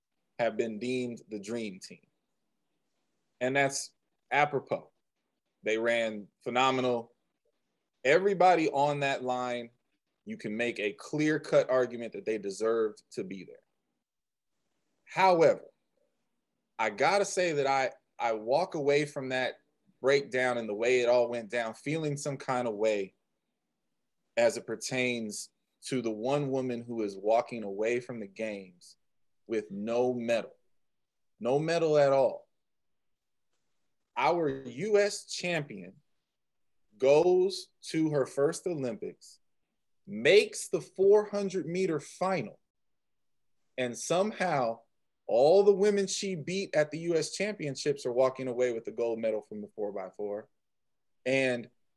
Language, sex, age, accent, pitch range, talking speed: English, male, 20-39, American, 115-155 Hz, 125 wpm